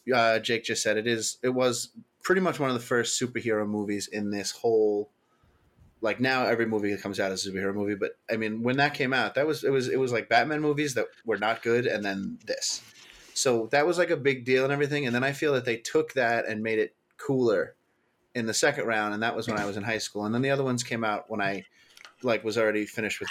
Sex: male